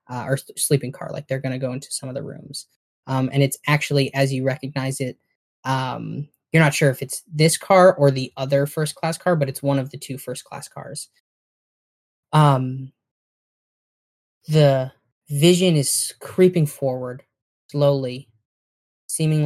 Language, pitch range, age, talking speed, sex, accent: English, 130-145 Hz, 10-29, 155 wpm, male, American